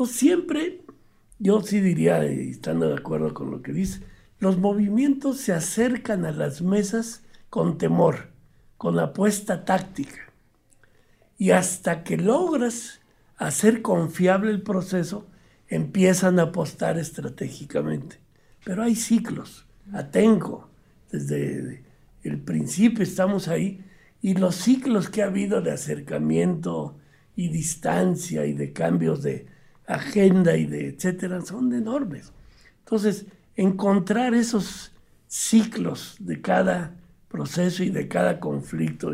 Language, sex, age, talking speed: Spanish, male, 60-79, 115 wpm